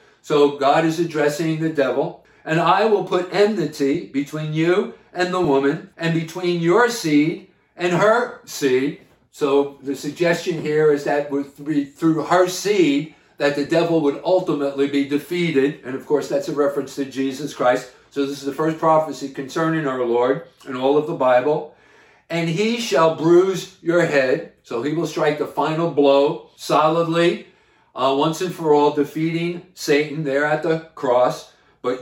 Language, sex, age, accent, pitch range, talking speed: English, male, 50-69, American, 140-165 Hz, 165 wpm